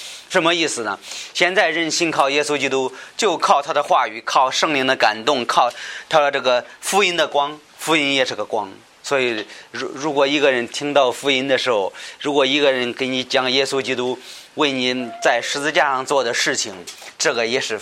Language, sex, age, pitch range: Chinese, male, 30-49, 120-150 Hz